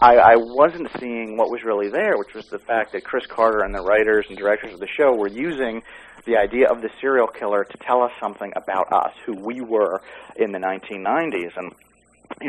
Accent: American